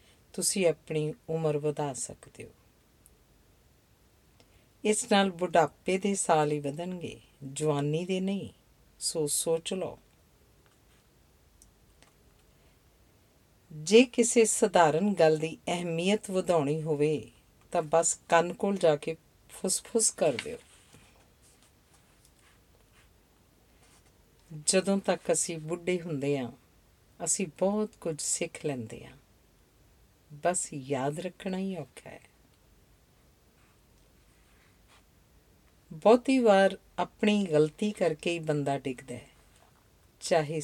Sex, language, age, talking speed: female, Punjabi, 50-69, 90 wpm